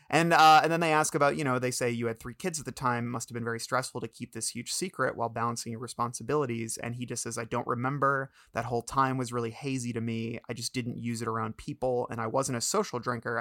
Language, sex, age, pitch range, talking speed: English, male, 30-49, 120-135 Hz, 270 wpm